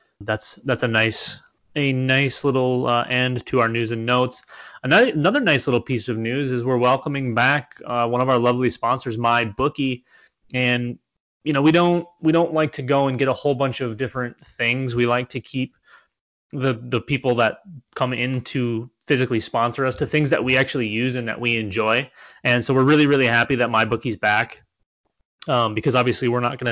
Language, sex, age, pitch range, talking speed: English, male, 20-39, 120-150 Hz, 200 wpm